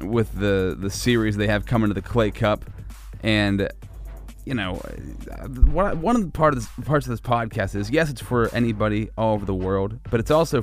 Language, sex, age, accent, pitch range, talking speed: English, male, 30-49, American, 105-135 Hz, 205 wpm